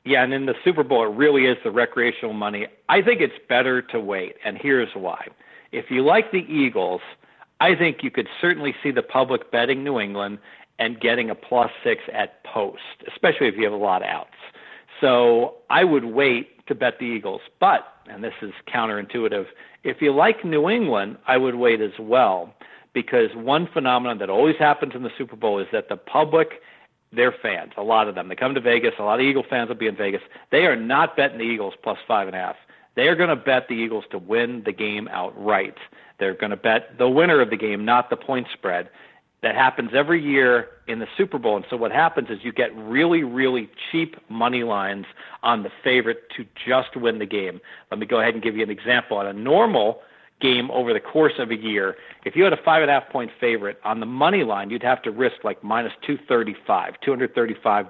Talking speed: 225 wpm